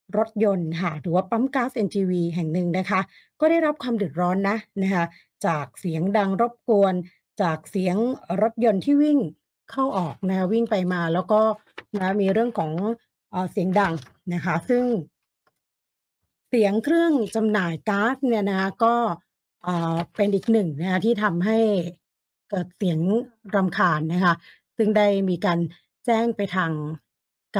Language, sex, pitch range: Thai, female, 175-225 Hz